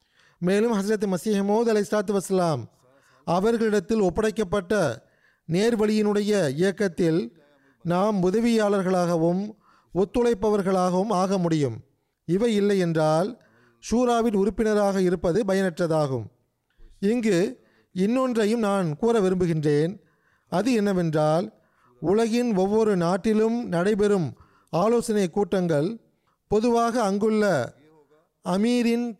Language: Tamil